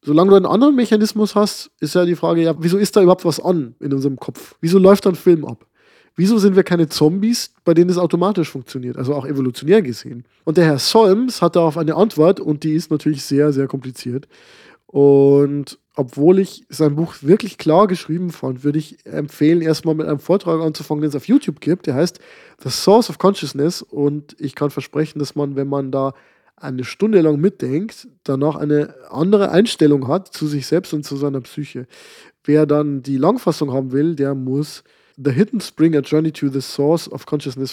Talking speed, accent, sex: 200 wpm, German, male